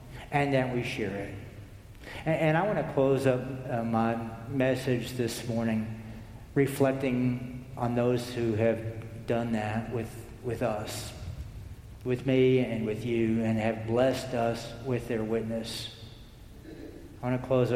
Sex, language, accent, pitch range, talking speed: male, English, American, 110-130 Hz, 145 wpm